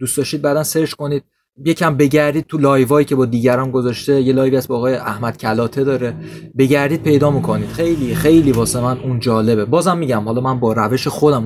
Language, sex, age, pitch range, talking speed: Persian, male, 20-39, 125-155 Hz, 200 wpm